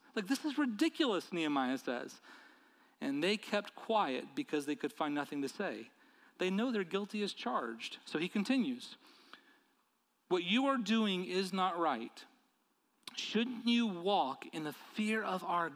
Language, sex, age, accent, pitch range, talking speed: English, male, 40-59, American, 185-260 Hz, 155 wpm